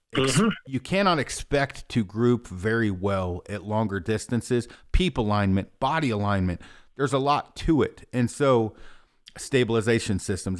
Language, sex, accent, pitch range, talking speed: English, male, American, 105-135 Hz, 130 wpm